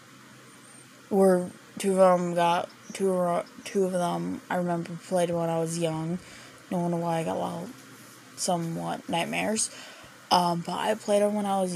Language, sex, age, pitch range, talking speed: English, female, 10-29, 170-215 Hz, 185 wpm